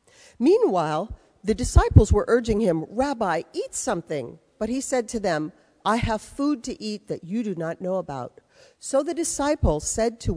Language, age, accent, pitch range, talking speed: English, 50-69, American, 165-255 Hz, 175 wpm